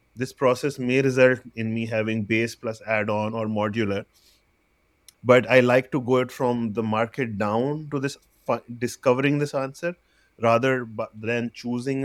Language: English